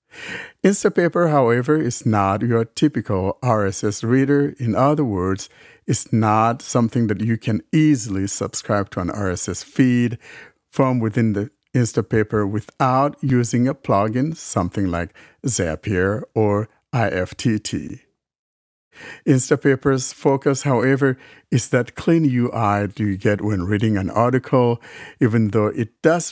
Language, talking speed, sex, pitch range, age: English, 125 wpm, male, 105-130 Hz, 60-79